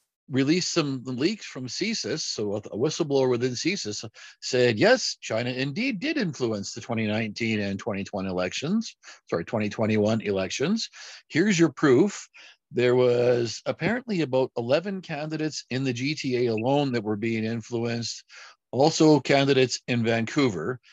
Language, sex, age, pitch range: English, male, 50-69, 110-140 Hz